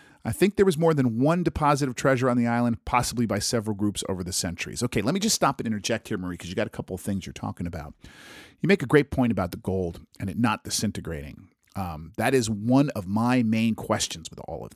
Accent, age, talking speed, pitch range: American, 40-59, 250 wpm, 105-135 Hz